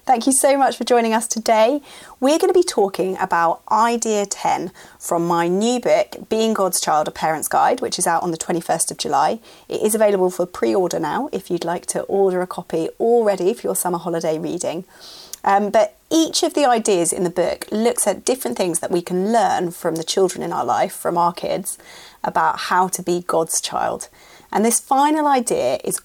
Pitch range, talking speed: 175-235 Hz, 205 wpm